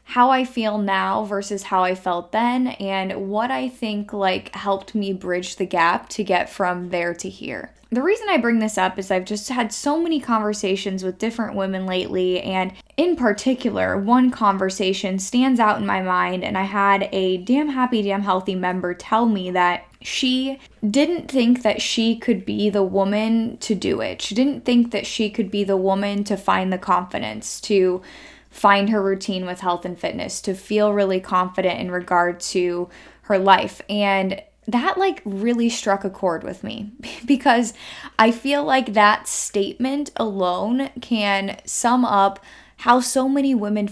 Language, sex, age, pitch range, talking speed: English, female, 10-29, 190-235 Hz, 175 wpm